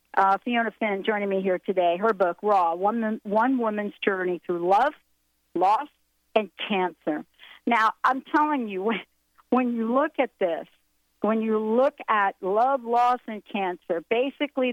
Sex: female